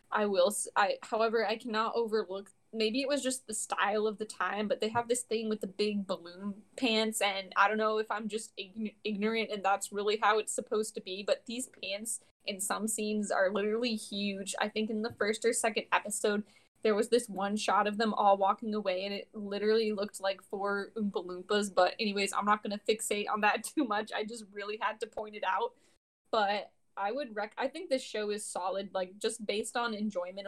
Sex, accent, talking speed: female, American, 215 wpm